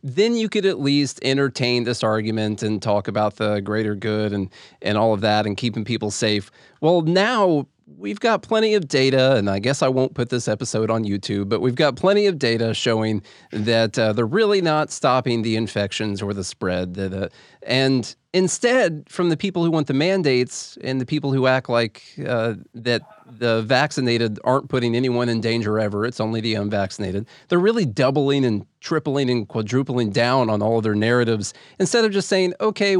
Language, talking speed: English, 195 wpm